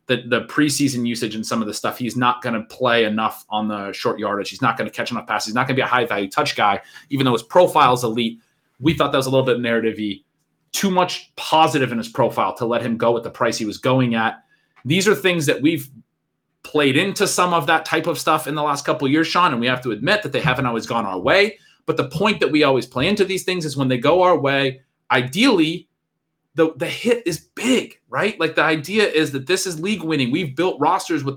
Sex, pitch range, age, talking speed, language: male, 130-180 Hz, 30-49, 260 wpm, English